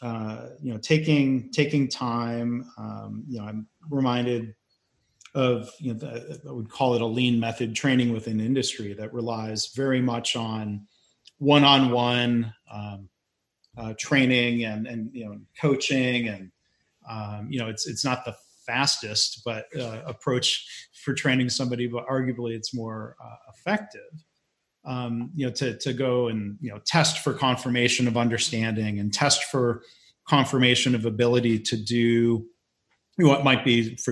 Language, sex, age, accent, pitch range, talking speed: English, male, 30-49, American, 115-140 Hz, 150 wpm